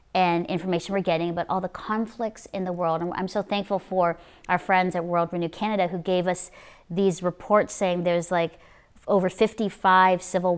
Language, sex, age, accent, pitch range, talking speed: English, female, 30-49, American, 170-195 Hz, 185 wpm